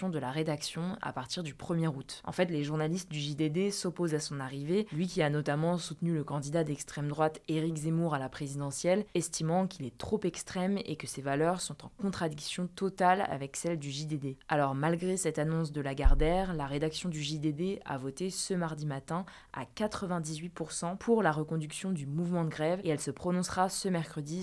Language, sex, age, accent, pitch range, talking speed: French, female, 20-39, French, 150-180 Hz, 195 wpm